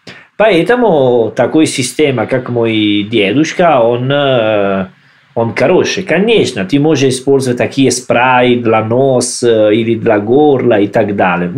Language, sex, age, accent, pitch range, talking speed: Russian, male, 40-59, Italian, 110-150 Hz, 120 wpm